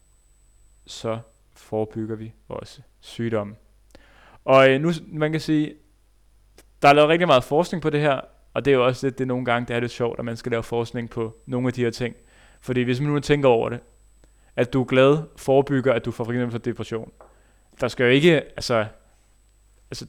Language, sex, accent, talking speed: Danish, male, native, 200 wpm